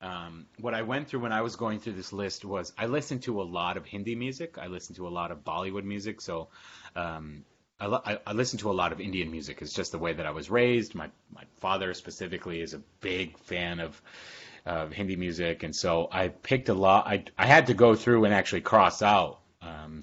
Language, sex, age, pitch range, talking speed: English, male, 30-49, 80-110 Hz, 235 wpm